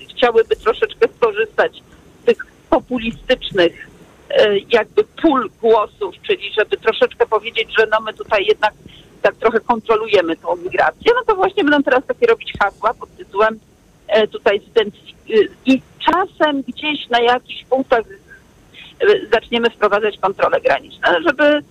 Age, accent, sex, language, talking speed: 50-69, native, female, Polish, 125 wpm